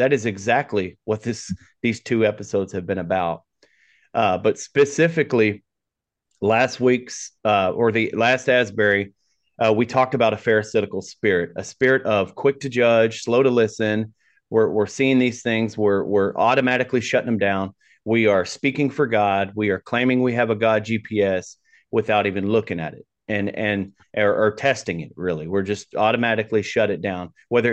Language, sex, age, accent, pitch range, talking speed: English, male, 30-49, American, 105-120 Hz, 175 wpm